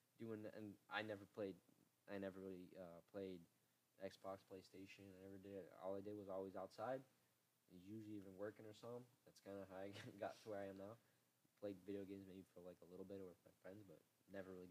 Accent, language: American, English